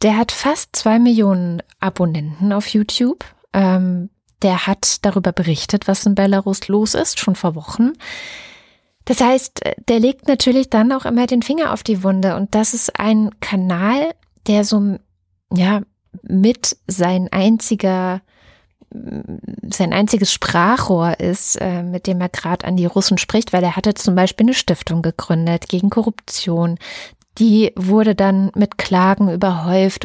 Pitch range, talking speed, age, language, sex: 185-215 Hz, 150 wpm, 20-39, German, female